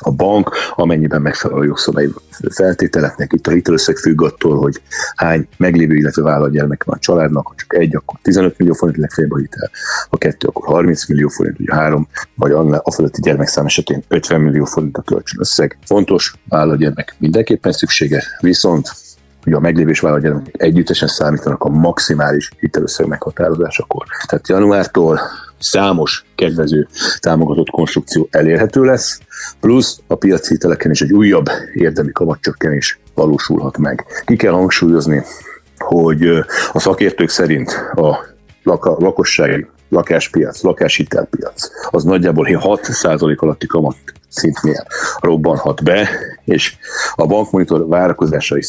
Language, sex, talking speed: Hungarian, male, 130 wpm